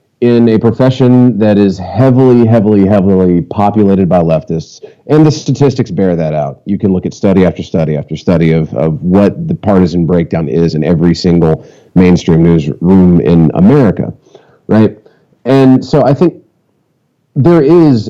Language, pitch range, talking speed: English, 95-120 Hz, 155 wpm